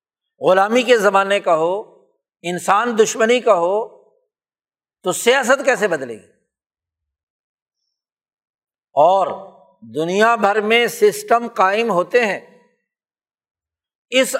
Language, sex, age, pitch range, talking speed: Urdu, male, 60-79, 185-245 Hz, 95 wpm